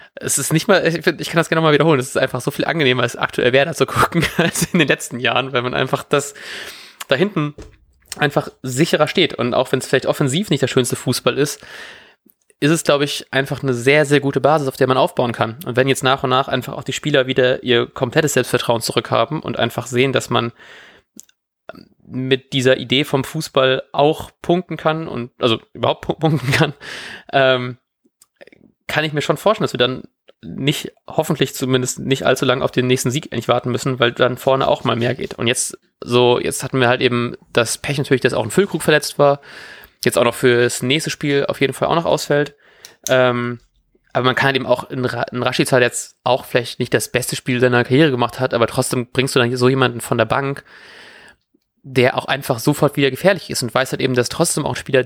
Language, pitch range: German, 125-150 Hz